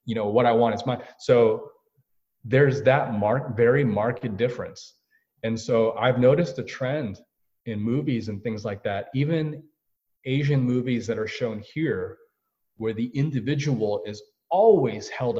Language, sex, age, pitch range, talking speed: English, male, 30-49, 105-135 Hz, 150 wpm